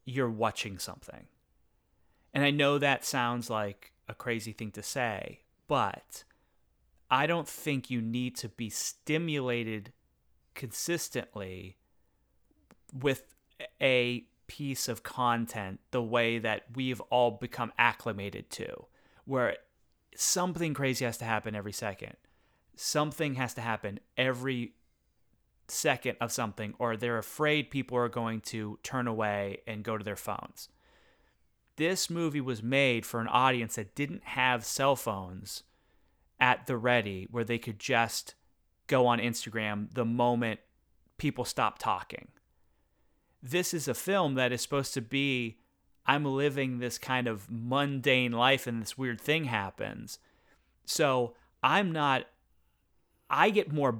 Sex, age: male, 30-49